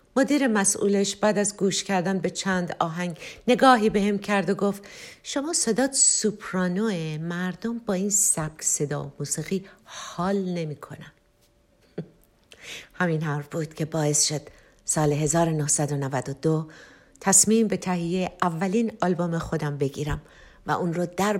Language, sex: Persian, female